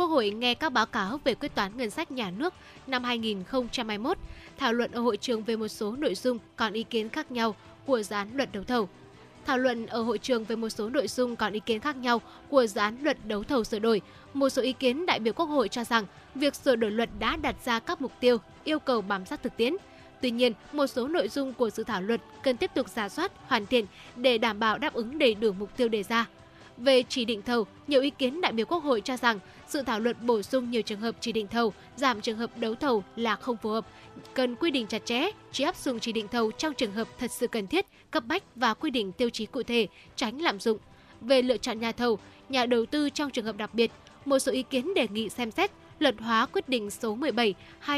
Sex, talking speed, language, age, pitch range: female, 250 wpm, Vietnamese, 10-29, 225-265 Hz